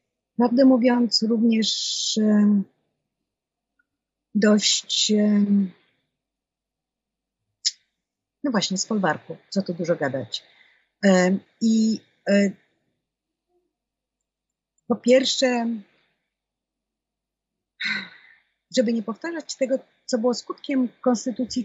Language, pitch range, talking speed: Polish, 200-255 Hz, 65 wpm